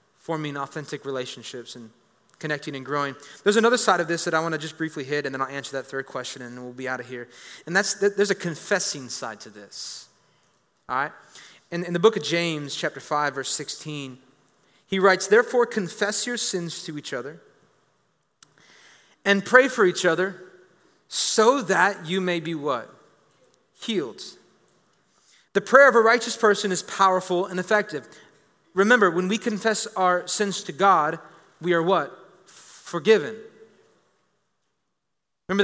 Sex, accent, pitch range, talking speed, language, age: male, American, 165-205 Hz, 160 wpm, English, 30-49